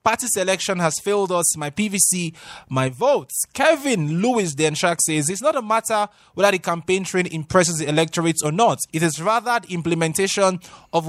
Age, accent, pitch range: 20-39, Nigerian, 160-210 Hz